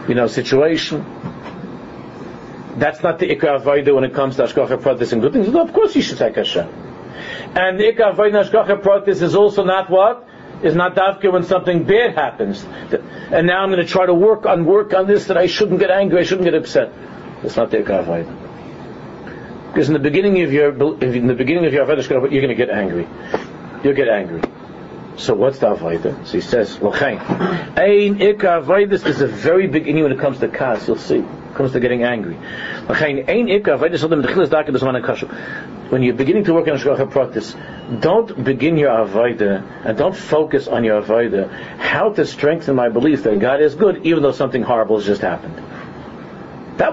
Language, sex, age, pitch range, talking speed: English, male, 50-69, 135-195 Hz, 190 wpm